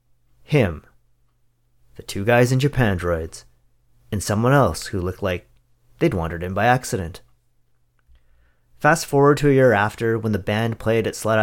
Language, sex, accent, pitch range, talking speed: English, male, American, 95-125 Hz, 160 wpm